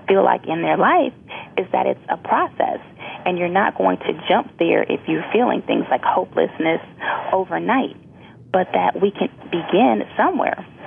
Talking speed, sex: 165 wpm, female